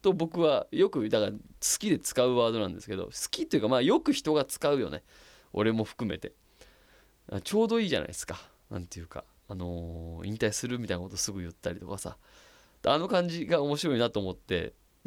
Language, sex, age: Japanese, male, 20-39